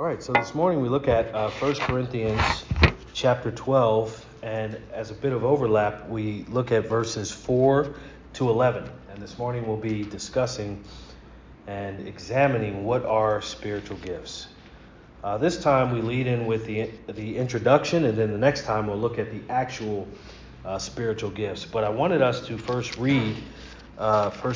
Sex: male